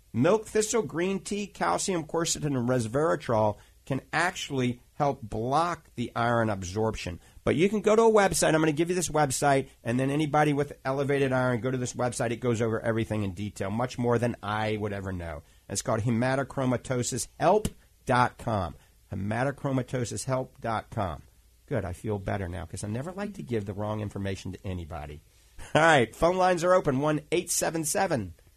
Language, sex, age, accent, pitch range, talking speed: English, male, 50-69, American, 100-135 Hz, 170 wpm